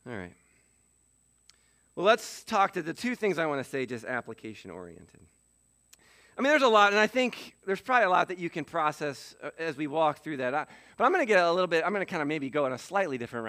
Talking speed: 245 wpm